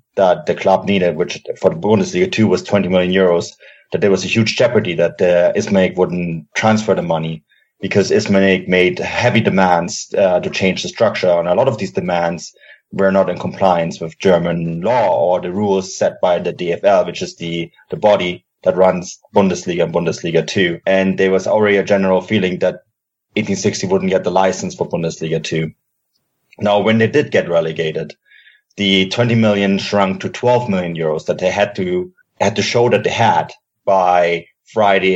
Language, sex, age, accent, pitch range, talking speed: English, male, 30-49, German, 85-100 Hz, 185 wpm